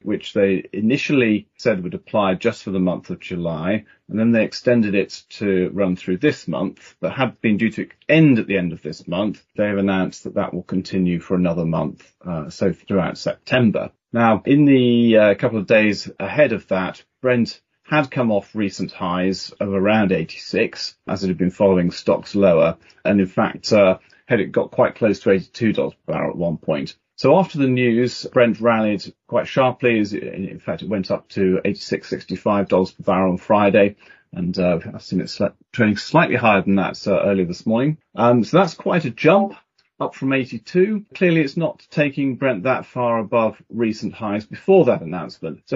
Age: 40-59